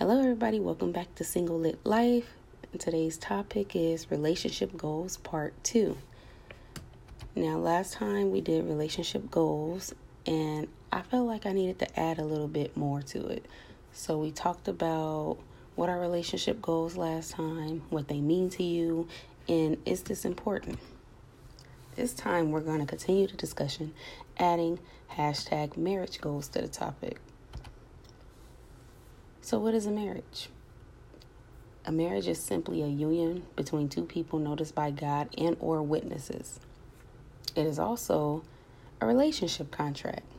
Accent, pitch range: American, 135-175 Hz